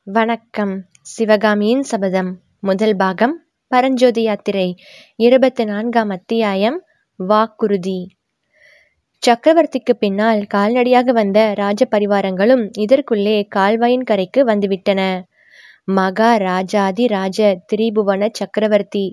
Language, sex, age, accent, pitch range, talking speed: Tamil, female, 20-39, native, 195-235 Hz, 80 wpm